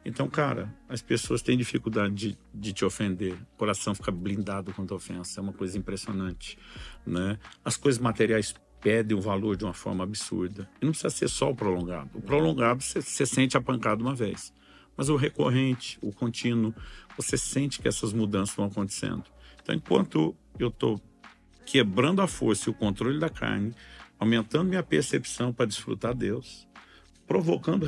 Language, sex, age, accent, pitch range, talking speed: Portuguese, male, 50-69, Brazilian, 100-130 Hz, 170 wpm